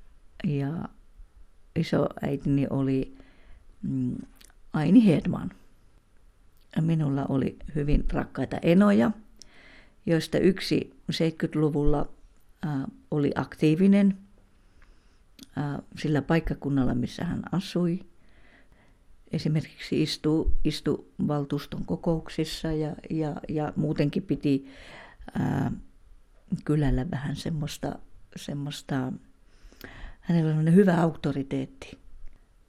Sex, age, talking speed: female, 50-69, 75 wpm